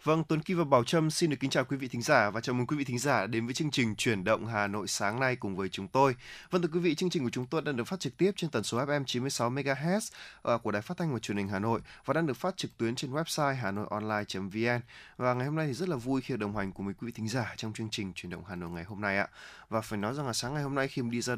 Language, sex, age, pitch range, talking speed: Vietnamese, male, 20-39, 105-145 Hz, 320 wpm